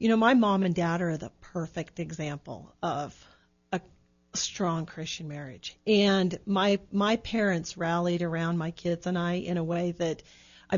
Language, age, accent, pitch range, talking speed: English, 40-59, American, 170-205 Hz, 165 wpm